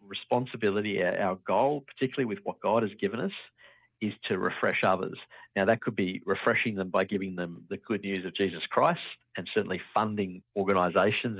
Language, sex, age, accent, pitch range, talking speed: English, male, 50-69, Australian, 95-125 Hz, 175 wpm